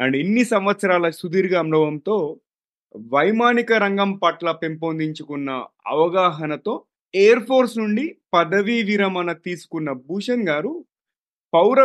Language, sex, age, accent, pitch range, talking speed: Telugu, male, 30-49, native, 140-190 Hz, 95 wpm